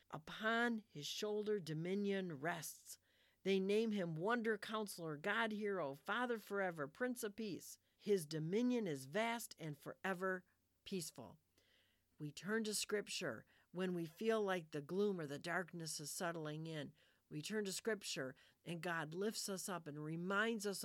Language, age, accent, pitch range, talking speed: English, 50-69, American, 160-215 Hz, 150 wpm